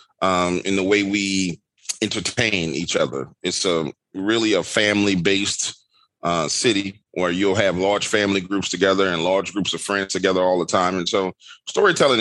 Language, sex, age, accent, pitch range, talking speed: English, male, 30-49, American, 95-110 Hz, 170 wpm